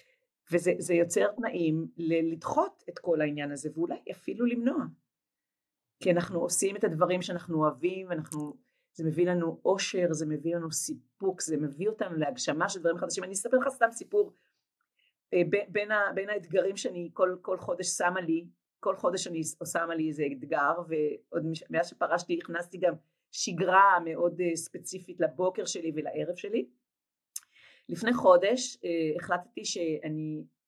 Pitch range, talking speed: 165-220 Hz, 150 wpm